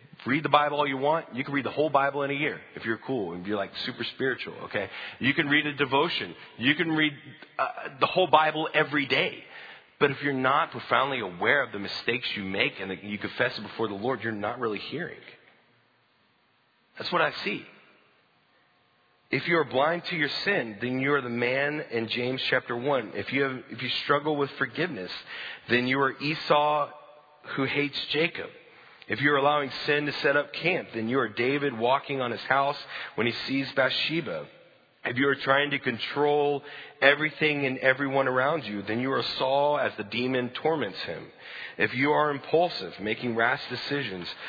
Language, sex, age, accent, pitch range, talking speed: English, male, 30-49, American, 120-145 Hz, 195 wpm